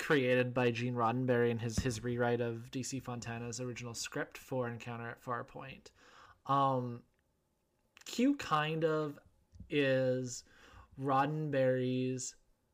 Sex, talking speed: male, 110 wpm